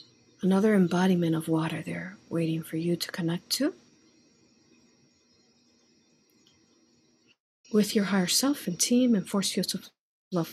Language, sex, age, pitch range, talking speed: English, female, 50-69, 170-225 Hz, 125 wpm